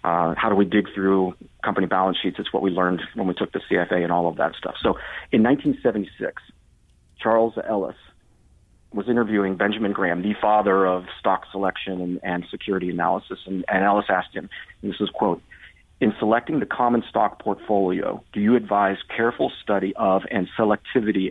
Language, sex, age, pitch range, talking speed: English, male, 40-59, 95-105 Hz, 180 wpm